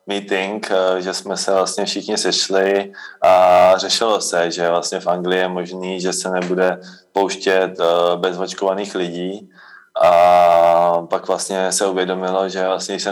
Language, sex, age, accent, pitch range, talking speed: Czech, male, 20-39, native, 85-95 Hz, 135 wpm